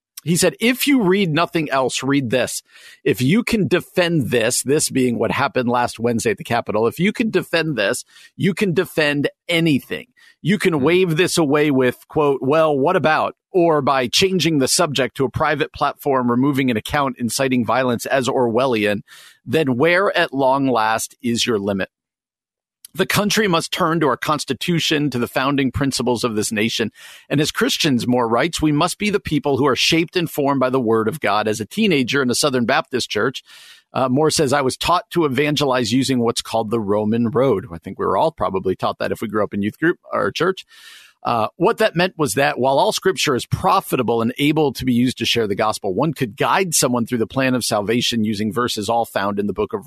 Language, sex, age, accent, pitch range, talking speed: English, male, 50-69, American, 120-170 Hz, 210 wpm